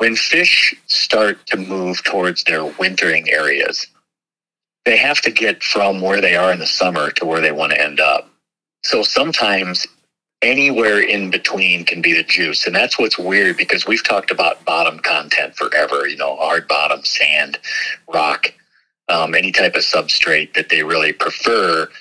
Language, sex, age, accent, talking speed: English, male, 50-69, American, 170 wpm